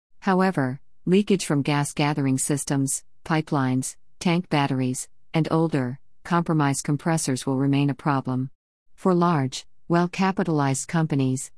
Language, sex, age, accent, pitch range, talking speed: English, female, 50-69, American, 135-165 Hz, 105 wpm